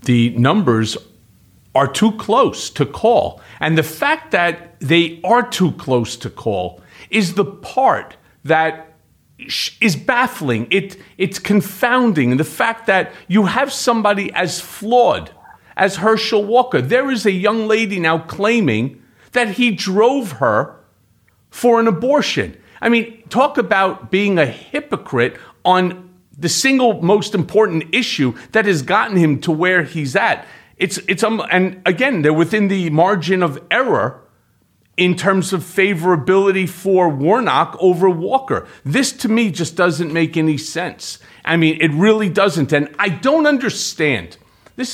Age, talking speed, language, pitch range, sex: 50-69, 145 wpm, English, 145-210 Hz, male